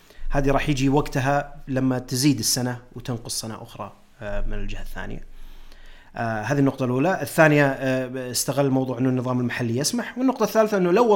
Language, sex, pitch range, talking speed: Arabic, male, 110-135 Hz, 145 wpm